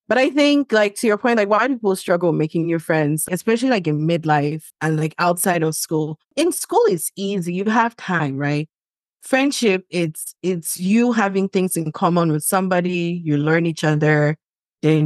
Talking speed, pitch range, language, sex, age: 185 wpm, 155-195 Hz, English, female, 20-39